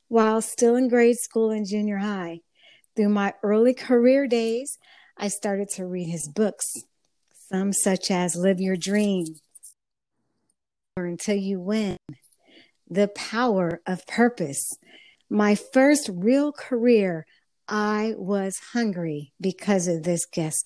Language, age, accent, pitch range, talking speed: English, 50-69, American, 180-225 Hz, 130 wpm